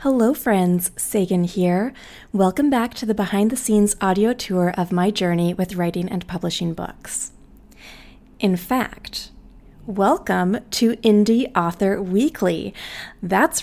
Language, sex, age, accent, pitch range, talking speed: English, female, 20-39, American, 185-225 Hz, 125 wpm